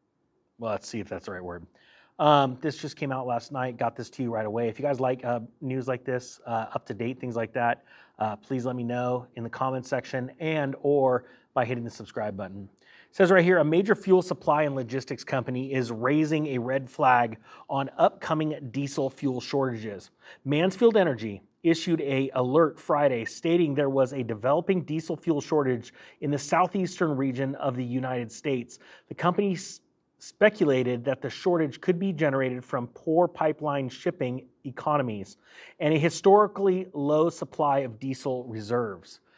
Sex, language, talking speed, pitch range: male, English, 180 wpm, 125-150 Hz